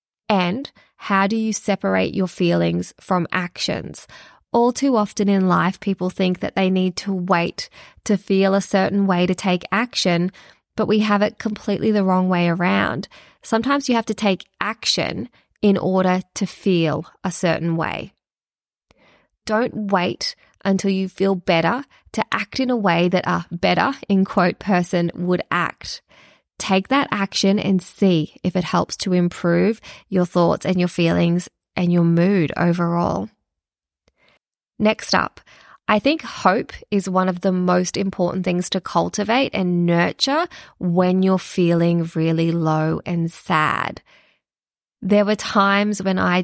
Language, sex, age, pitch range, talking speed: English, female, 20-39, 175-200 Hz, 150 wpm